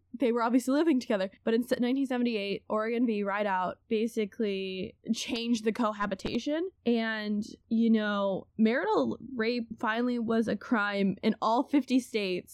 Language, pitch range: English, 205-250 Hz